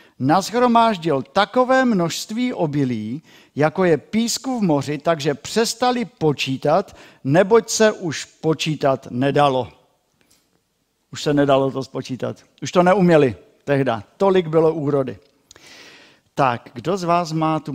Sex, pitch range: male, 130-170 Hz